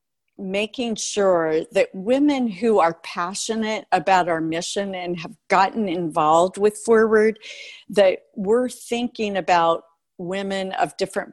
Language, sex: English, female